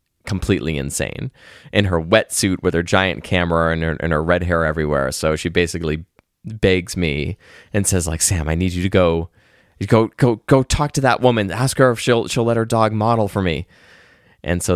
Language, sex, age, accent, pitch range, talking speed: English, male, 20-39, American, 85-120 Hz, 205 wpm